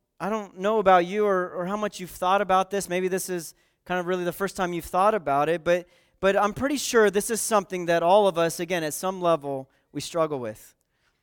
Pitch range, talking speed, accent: 160-195 Hz, 240 wpm, American